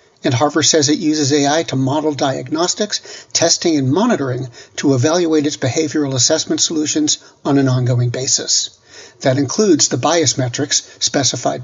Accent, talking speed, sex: American, 145 wpm, male